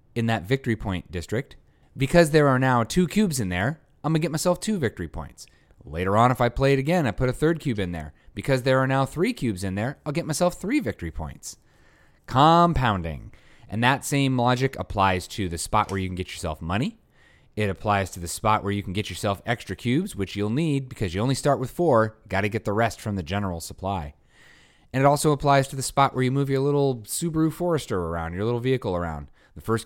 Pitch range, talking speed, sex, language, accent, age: 95-135 Hz, 230 wpm, male, English, American, 30-49